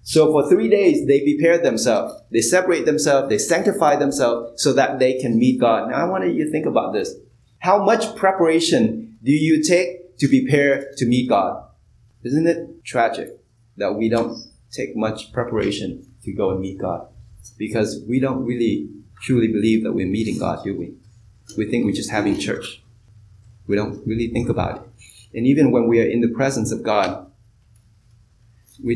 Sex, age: male, 20-39